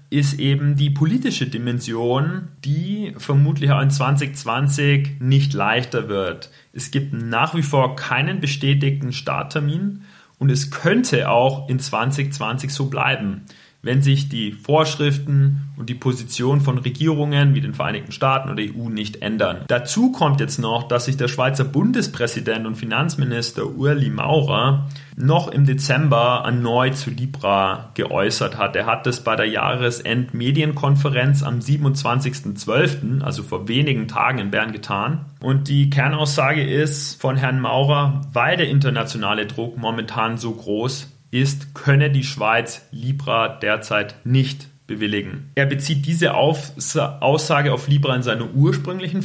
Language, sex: German, male